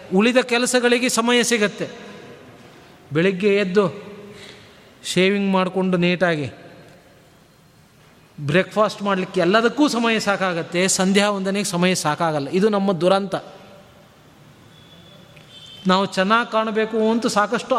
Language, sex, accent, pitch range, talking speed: Kannada, male, native, 180-230 Hz, 90 wpm